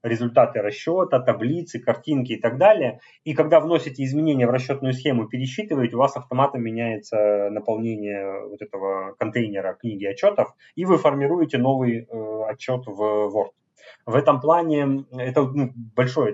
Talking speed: 145 wpm